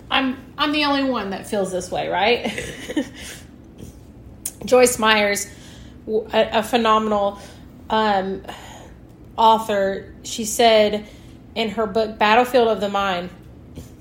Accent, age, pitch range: American, 30-49, 195-245 Hz